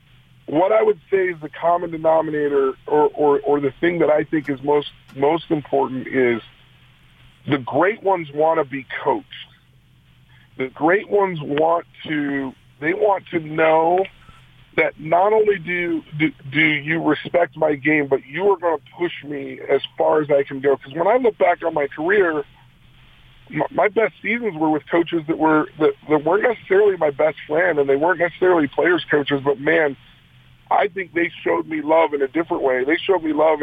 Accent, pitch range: American, 140-170 Hz